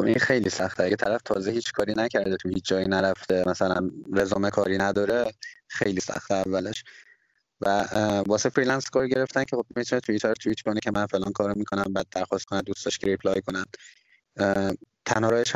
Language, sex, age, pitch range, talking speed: Persian, male, 20-39, 95-115 Hz, 175 wpm